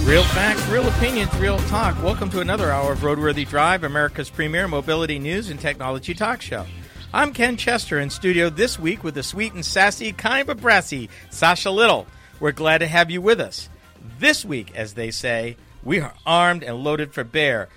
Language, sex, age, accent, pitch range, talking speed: English, male, 50-69, American, 140-210 Hz, 195 wpm